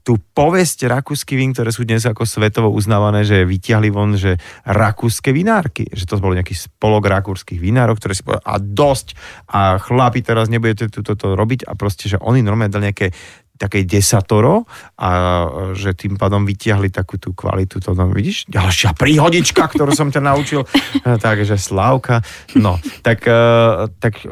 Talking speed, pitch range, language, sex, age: 160 wpm, 95-120 Hz, Slovak, male, 30-49